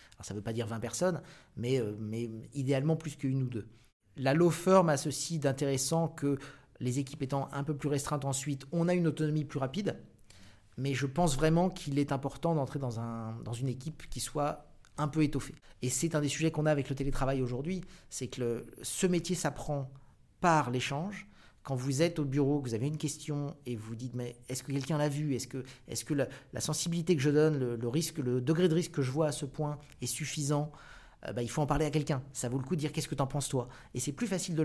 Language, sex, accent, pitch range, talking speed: French, male, French, 130-155 Hz, 245 wpm